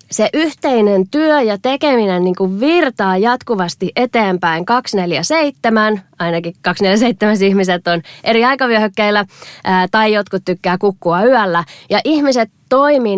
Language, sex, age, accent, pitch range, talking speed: Finnish, female, 20-39, native, 175-225 Hz, 115 wpm